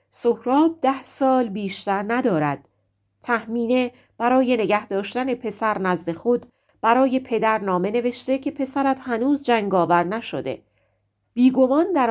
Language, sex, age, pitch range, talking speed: Persian, female, 40-59, 175-245 Hz, 115 wpm